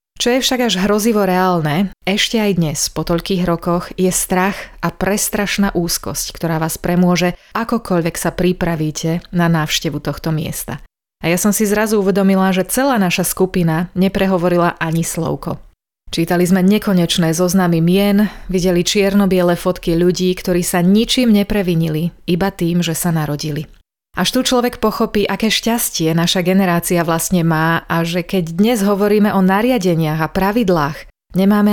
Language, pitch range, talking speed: Slovak, 165-200 Hz, 150 wpm